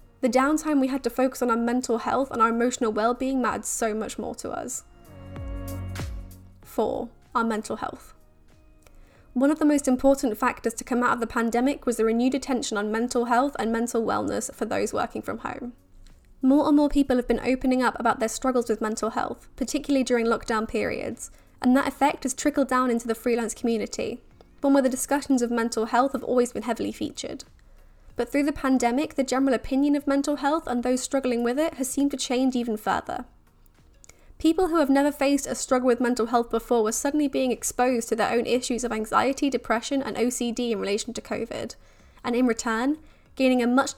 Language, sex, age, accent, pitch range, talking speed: English, female, 10-29, British, 230-270 Hz, 200 wpm